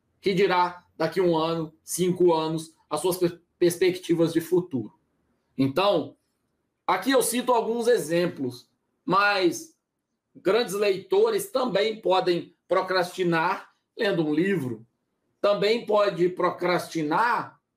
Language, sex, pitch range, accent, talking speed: Portuguese, male, 165-220 Hz, Brazilian, 105 wpm